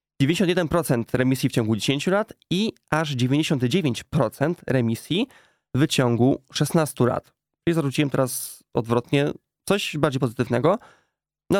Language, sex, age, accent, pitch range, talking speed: Polish, male, 20-39, native, 125-160 Hz, 110 wpm